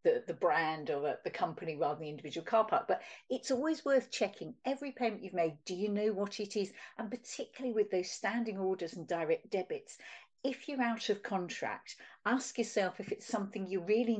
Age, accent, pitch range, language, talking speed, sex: 50-69, British, 185-250 Hz, English, 205 wpm, female